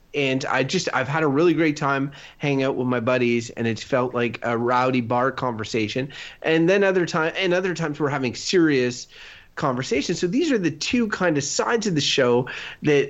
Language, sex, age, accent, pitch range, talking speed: English, male, 30-49, American, 125-170 Hz, 205 wpm